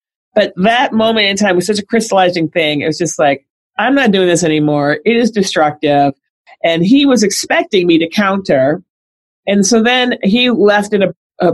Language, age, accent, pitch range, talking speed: English, 40-59, American, 155-205 Hz, 190 wpm